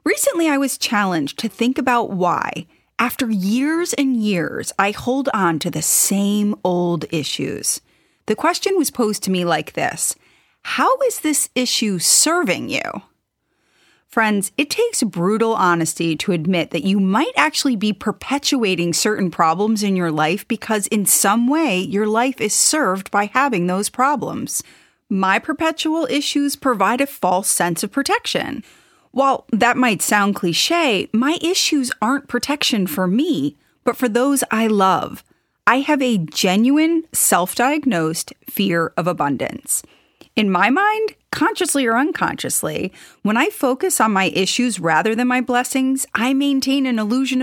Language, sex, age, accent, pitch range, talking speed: English, female, 30-49, American, 190-275 Hz, 150 wpm